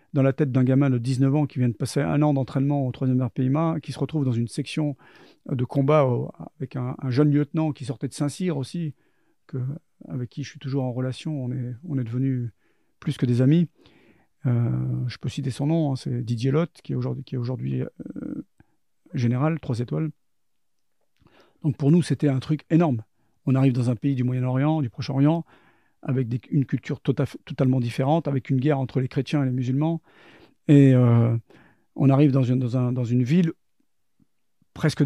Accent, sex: French, male